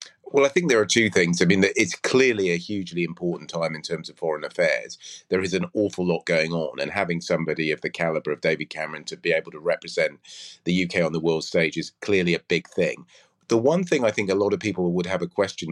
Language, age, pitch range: English, 30-49, 85-100 Hz